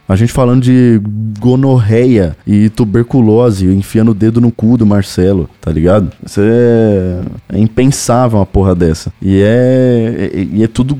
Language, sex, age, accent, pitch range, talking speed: Portuguese, male, 20-39, Brazilian, 95-120 Hz, 155 wpm